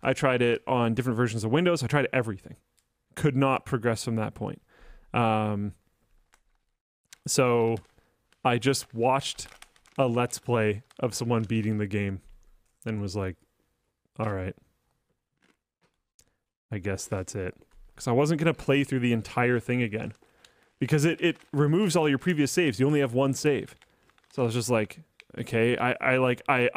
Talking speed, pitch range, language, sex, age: 160 wpm, 115-150 Hz, English, male, 30-49